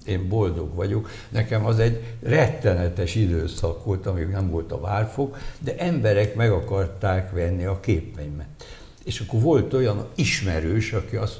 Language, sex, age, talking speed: Hungarian, male, 60-79, 145 wpm